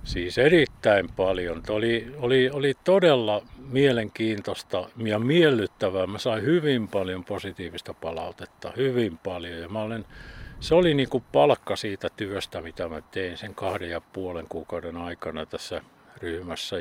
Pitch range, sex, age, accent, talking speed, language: 95-130 Hz, male, 50-69, native, 130 wpm, Finnish